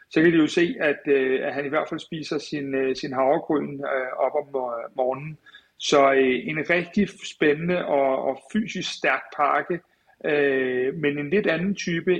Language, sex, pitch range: Danish, male, 145-185 Hz